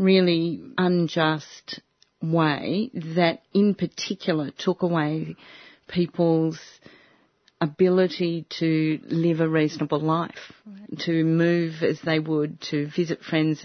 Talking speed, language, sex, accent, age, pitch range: 100 wpm, English, female, Australian, 40-59, 155-185 Hz